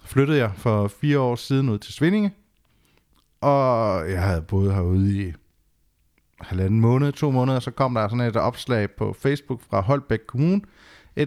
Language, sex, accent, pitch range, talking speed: Danish, male, native, 100-130 Hz, 165 wpm